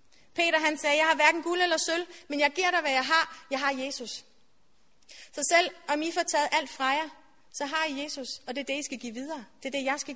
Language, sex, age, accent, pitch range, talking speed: Danish, female, 30-49, native, 260-305 Hz, 265 wpm